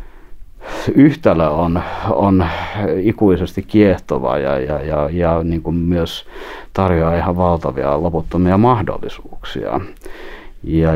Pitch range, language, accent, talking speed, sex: 80-100 Hz, Finnish, native, 105 wpm, male